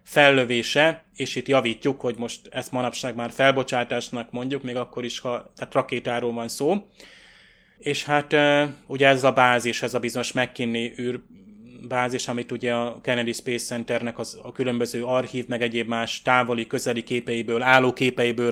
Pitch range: 120-130 Hz